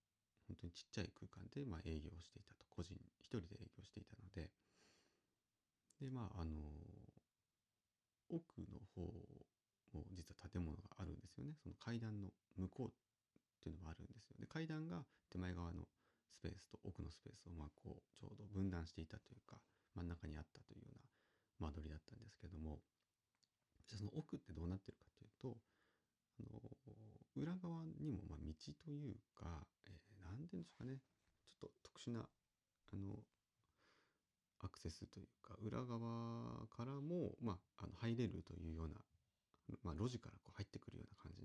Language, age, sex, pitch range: Japanese, 40-59, male, 90-120 Hz